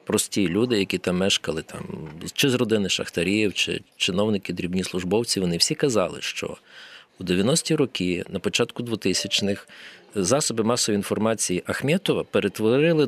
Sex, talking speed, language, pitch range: male, 135 wpm, Ukrainian, 100-125 Hz